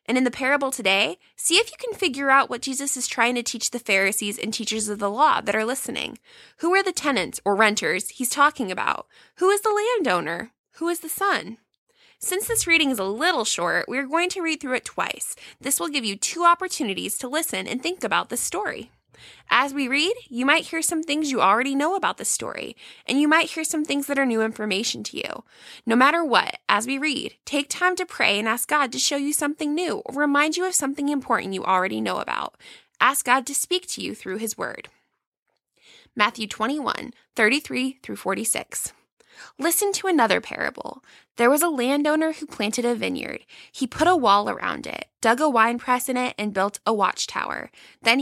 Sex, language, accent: female, English, American